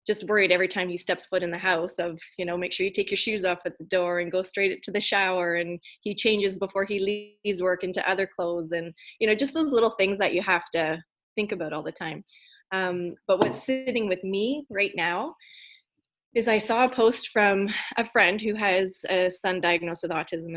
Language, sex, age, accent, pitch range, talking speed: English, female, 20-39, American, 175-205 Hz, 230 wpm